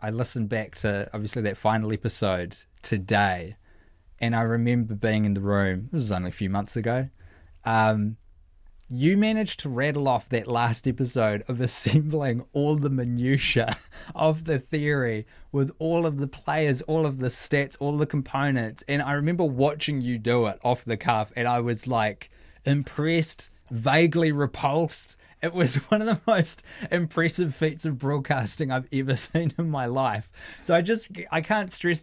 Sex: male